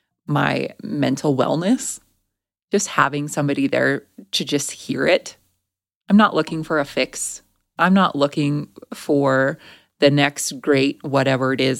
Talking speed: 135 wpm